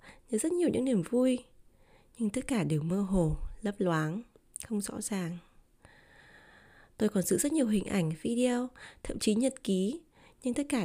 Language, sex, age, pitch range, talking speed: Vietnamese, female, 20-39, 180-245 Hz, 175 wpm